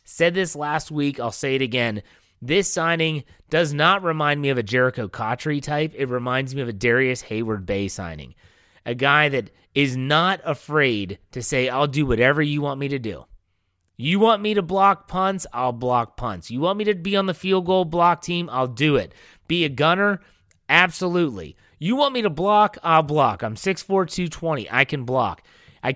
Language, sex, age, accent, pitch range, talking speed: English, male, 30-49, American, 125-175 Hz, 195 wpm